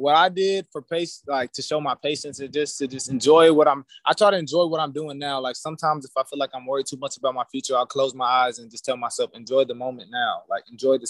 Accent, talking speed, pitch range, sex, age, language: American, 285 wpm, 130-155 Hz, male, 20-39, English